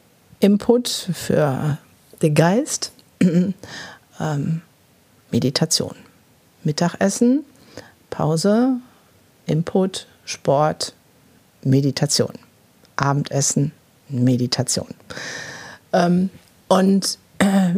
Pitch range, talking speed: 155-200 Hz, 55 wpm